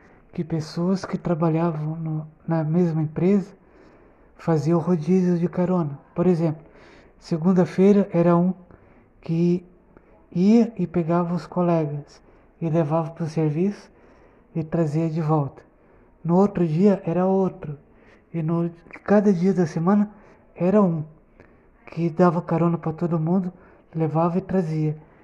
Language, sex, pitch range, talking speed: Portuguese, male, 160-180 Hz, 125 wpm